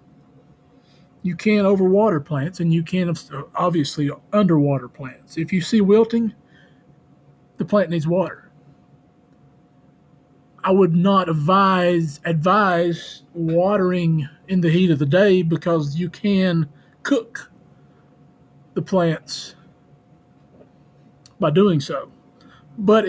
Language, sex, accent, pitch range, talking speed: English, male, American, 150-185 Hz, 105 wpm